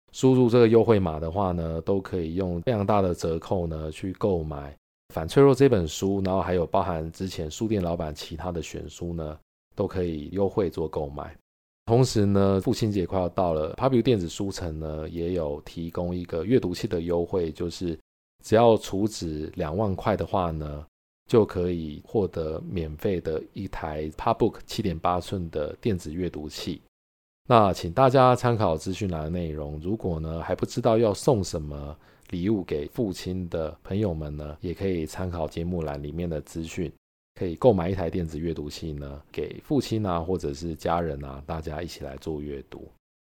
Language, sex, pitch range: Chinese, male, 80-100 Hz